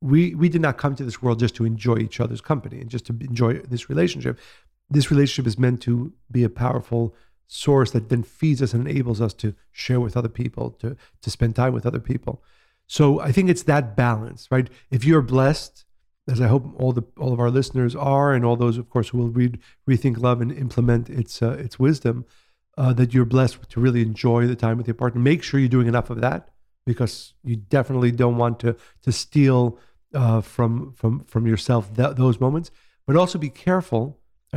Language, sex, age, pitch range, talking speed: English, male, 40-59, 120-135 Hz, 215 wpm